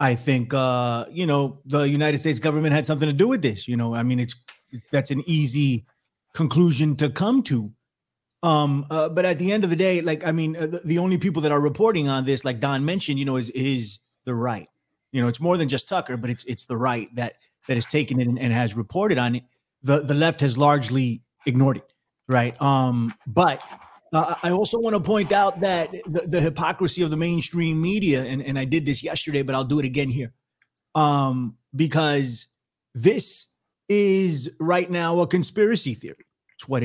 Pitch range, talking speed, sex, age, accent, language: 130-165 Hz, 210 wpm, male, 30-49, American, English